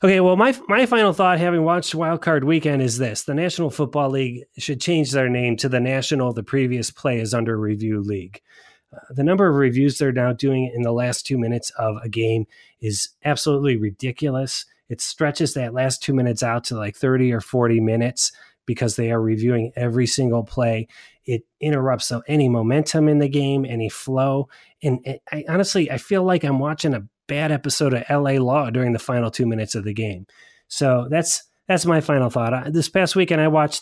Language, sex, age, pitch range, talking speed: English, male, 30-49, 120-155 Hz, 200 wpm